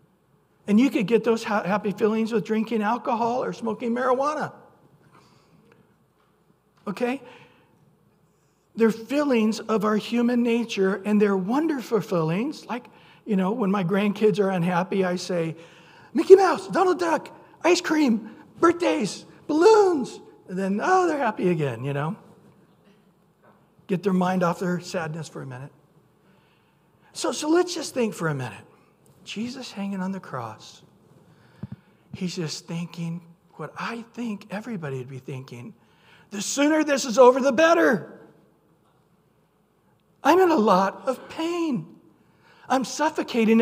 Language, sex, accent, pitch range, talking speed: English, male, American, 185-260 Hz, 135 wpm